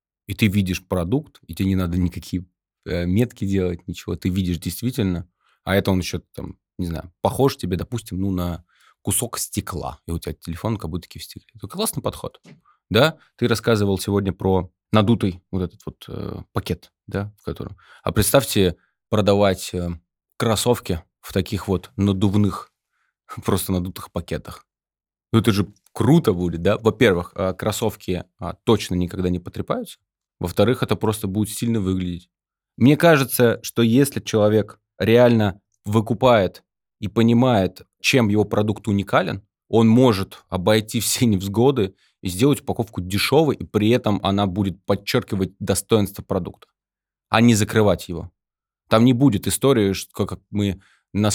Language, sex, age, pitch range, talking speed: Russian, male, 20-39, 90-110 Hz, 150 wpm